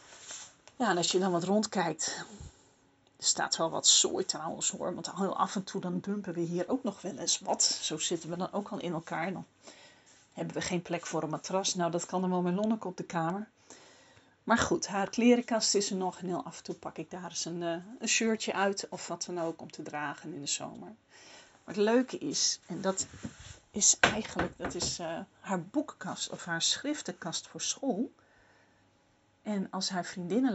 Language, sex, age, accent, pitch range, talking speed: Dutch, female, 40-59, Dutch, 180-240 Hz, 210 wpm